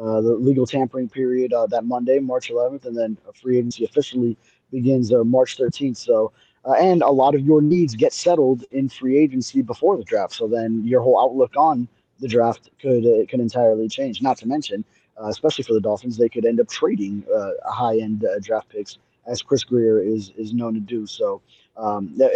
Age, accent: 20-39, American